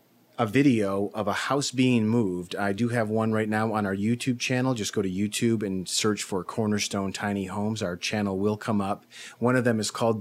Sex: male